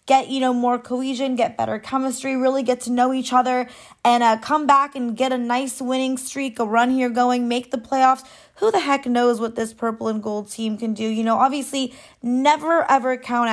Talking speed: 215 wpm